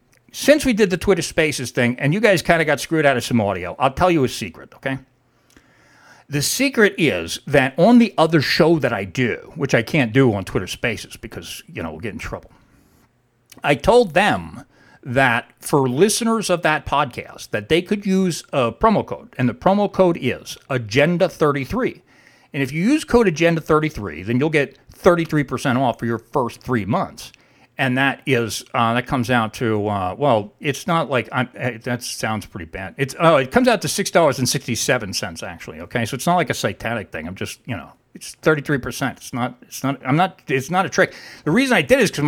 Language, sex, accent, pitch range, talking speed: English, male, American, 125-175 Hz, 205 wpm